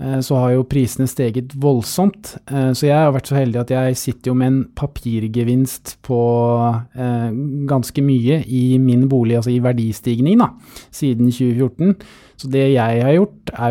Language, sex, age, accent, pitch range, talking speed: English, male, 20-39, Norwegian, 115-135 Hz, 160 wpm